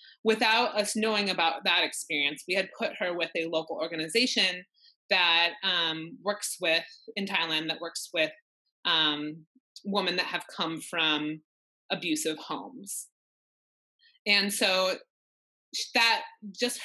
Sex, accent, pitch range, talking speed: female, American, 160-235 Hz, 125 wpm